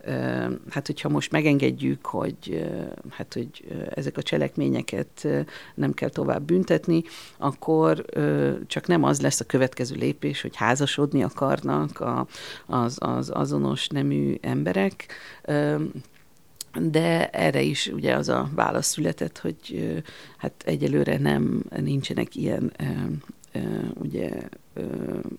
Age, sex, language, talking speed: 50-69, female, Hungarian, 105 wpm